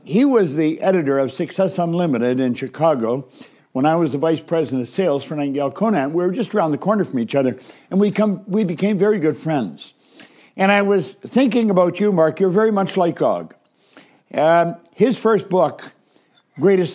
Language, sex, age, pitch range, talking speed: English, male, 60-79, 150-195 Hz, 190 wpm